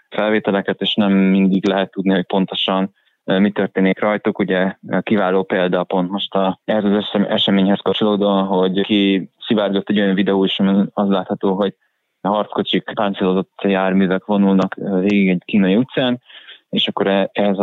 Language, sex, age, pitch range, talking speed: Hungarian, male, 20-39, 95-105 Hz, 155 wpm